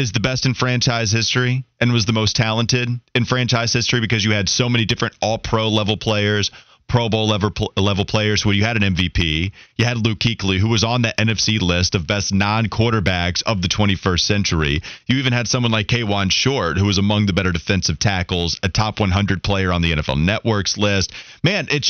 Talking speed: 215 wpm